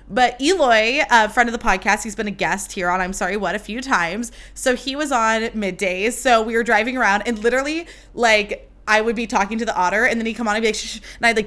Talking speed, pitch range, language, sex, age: 260 wpm, 195-235 Hz, English, female, 20-39